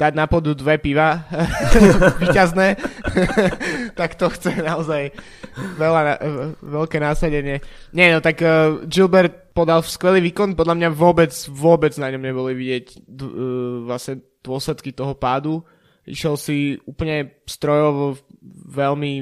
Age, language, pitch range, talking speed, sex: 20-39, Slovak, 135-160 Hz, 135 wpm, male